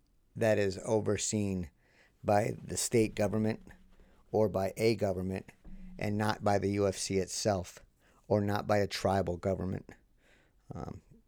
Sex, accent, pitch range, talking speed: male, American, 95-105 Hz, 130 wpm